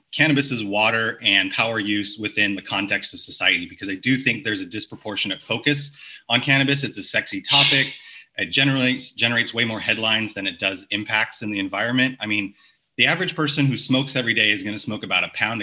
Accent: American